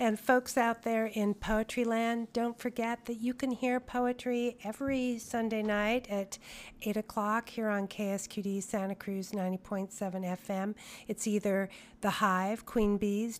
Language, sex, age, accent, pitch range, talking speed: English, female, 40-59, American, 200-245 Hz, 150 wpm